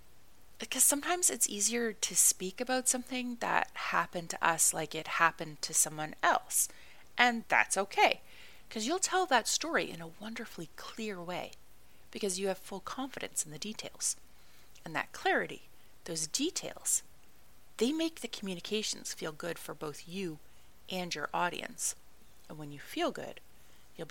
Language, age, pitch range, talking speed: English, 30-49, 165-255 Hz, 155 wpm